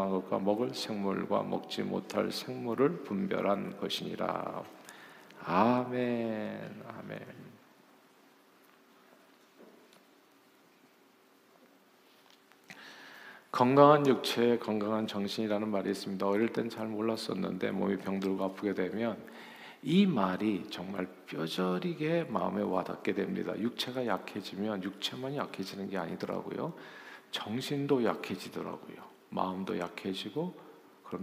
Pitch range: 95-120 Hz